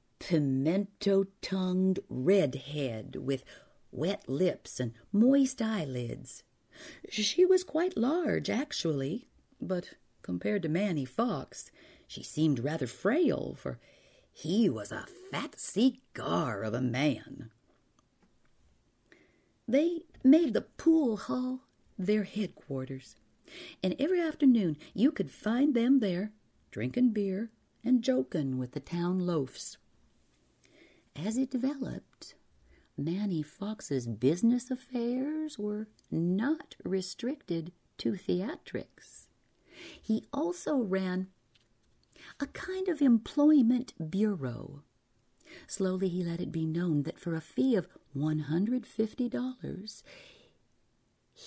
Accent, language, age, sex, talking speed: American, English, 50-69, female, 100 wpm